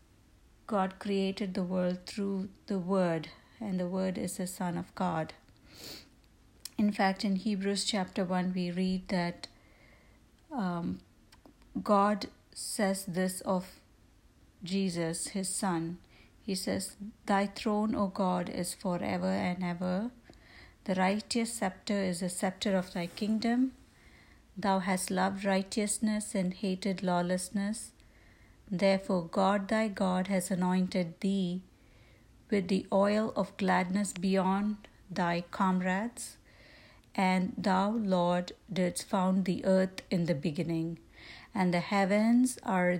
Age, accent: 60-79, Indian